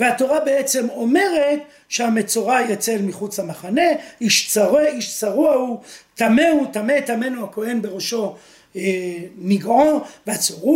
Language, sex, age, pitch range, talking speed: Hebrew, male, 40-59, 215-295 Hz, 105 wpm